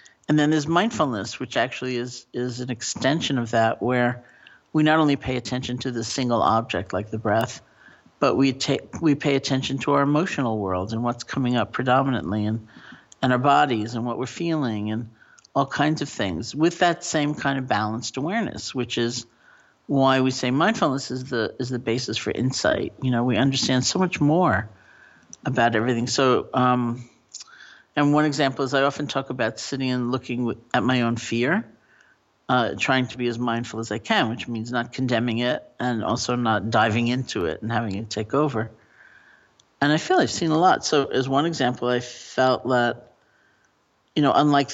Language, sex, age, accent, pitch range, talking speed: English, male, 50-69, American, 115-135 Hz, 190 wpm